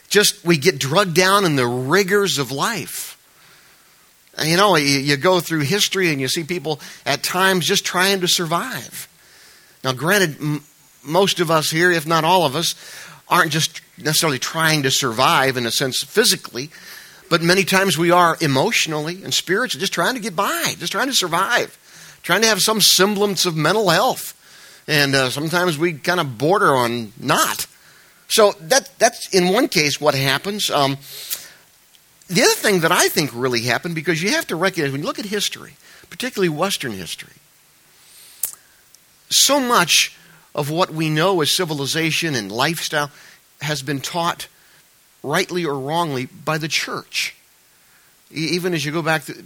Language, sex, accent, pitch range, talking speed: English, male, American, 145-185 Hz, 165 wpm